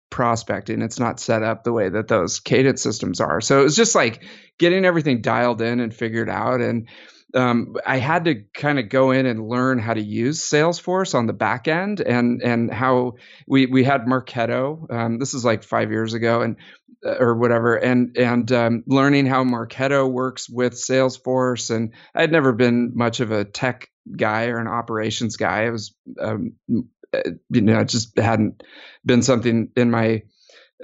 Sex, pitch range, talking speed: male, 115-130 Hz, 185 wpm